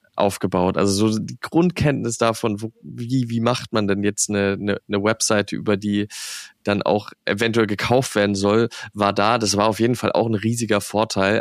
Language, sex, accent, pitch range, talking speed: German, male, German, 100-115 Hz, 190 wpm